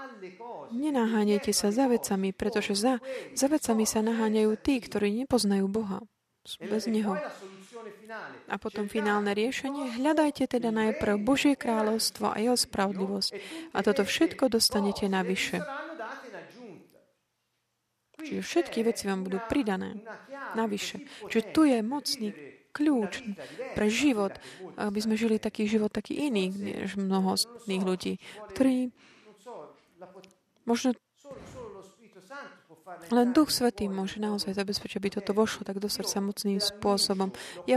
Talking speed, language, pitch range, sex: 120 wpm, Slovak, 205-245 Hz, female